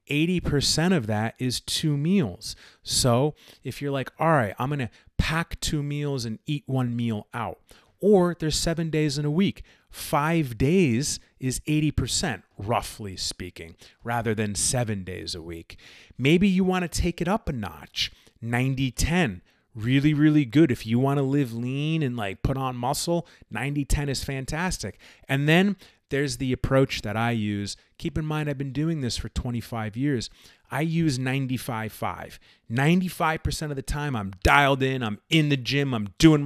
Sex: male